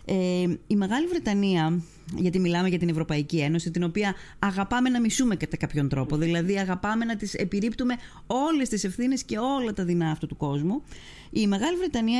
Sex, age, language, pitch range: female, 30-49, Greek, 165-225 Hz